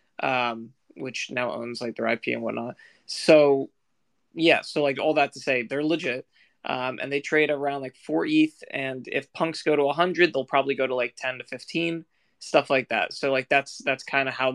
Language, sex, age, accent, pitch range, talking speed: English, male, 20-39, American, 130-165 Hz, 215 wpm